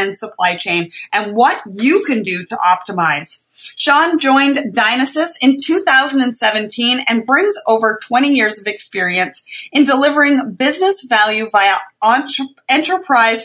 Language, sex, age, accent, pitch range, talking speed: English, female, 30-49, American, 195-270 Hz, 125 wpm